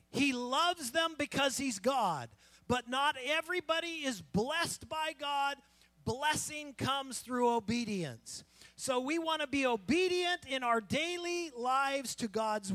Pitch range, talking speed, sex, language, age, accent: 215-305 Hz, 135 wpm, male, English, 40-59, American